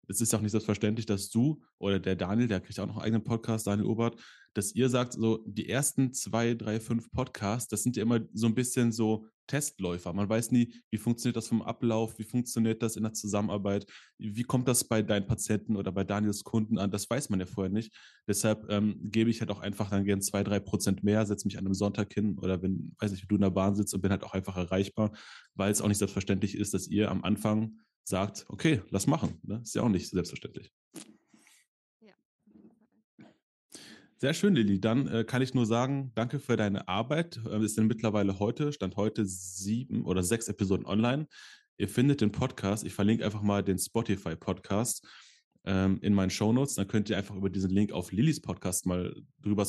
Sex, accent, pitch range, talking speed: male, German, 100-115 Hz, 210 wpm